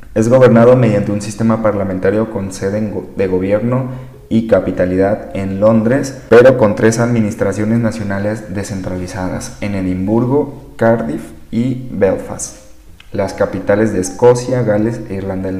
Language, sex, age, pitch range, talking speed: Spanish, male, 30-49, 100-120 Hz, 125 wpm